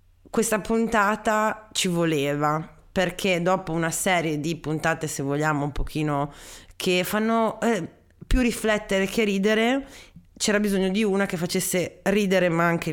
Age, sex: 30-49, female